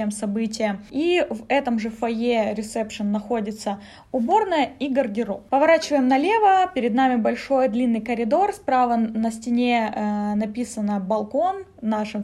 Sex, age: female, 20-39